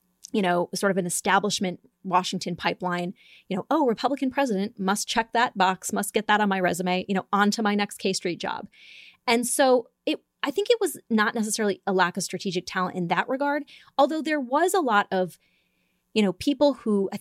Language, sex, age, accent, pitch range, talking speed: English, female, 20-39, American, 180-240 Hz, 205 wpm